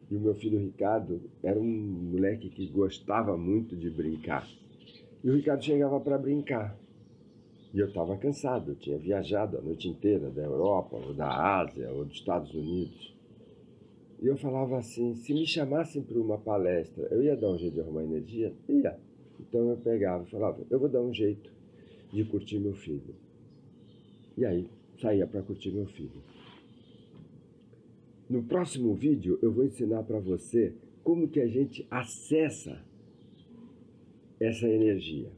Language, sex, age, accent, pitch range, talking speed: Portuguese, male, 50-69, Brazilian, 95-130 Hz, 155 wpm